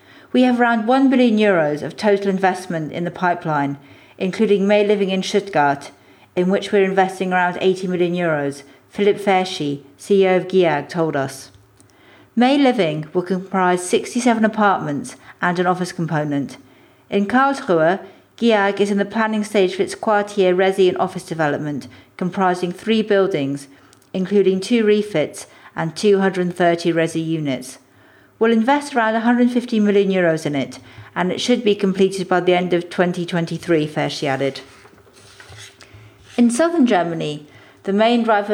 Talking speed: 145 wpm